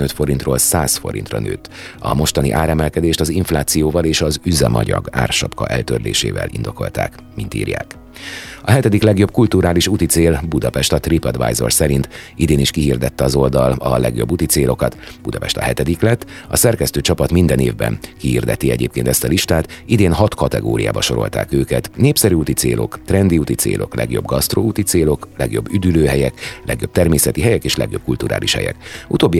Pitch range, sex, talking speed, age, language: 65-90 Hz, male, 145 wpm, 30-49, Hungarian